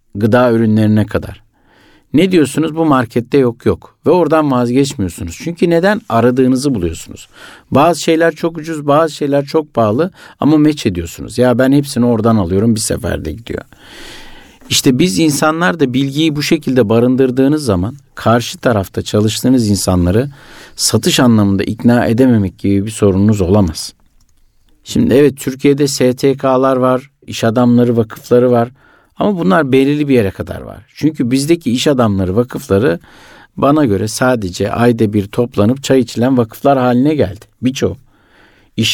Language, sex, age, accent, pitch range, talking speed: Turkish, male, 60-79, native, 110-140 Hz, 140 wpm